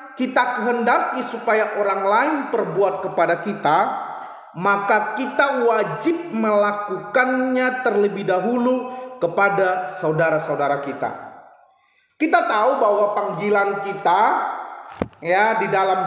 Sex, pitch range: male, 220-305 Hz